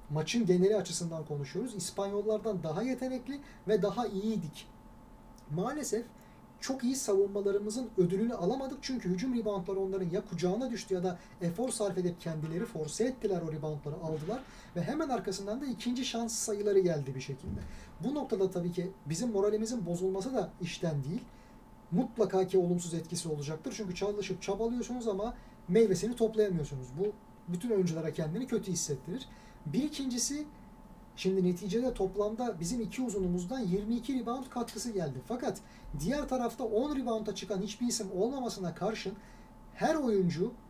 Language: Turkish